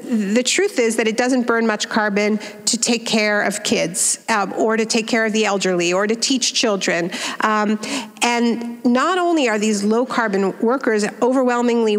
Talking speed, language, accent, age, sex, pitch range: 180 wpm, German, American, 50-69, female, 215-255 Hz